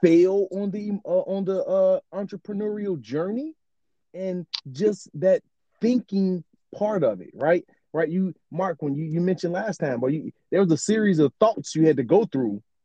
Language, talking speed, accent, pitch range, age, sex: English, 180 wpm, American, 160-220 Hz, 30-49, male